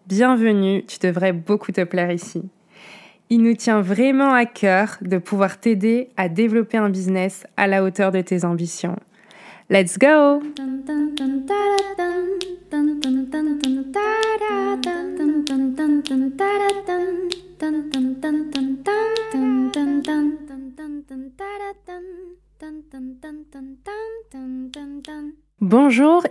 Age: 20-39